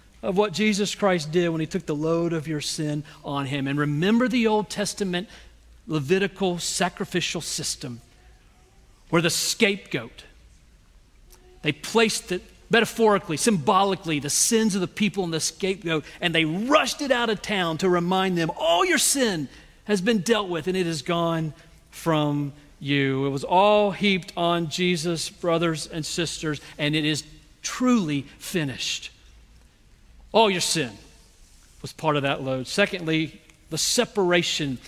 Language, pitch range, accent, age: English, 140-185 Hz, American, 40-59